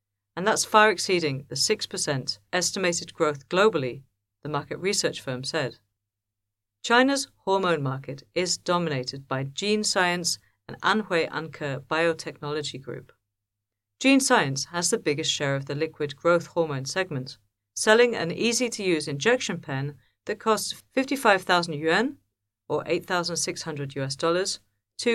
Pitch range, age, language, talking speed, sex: 130-190 Hz, 50-69, English, 130 wpm, female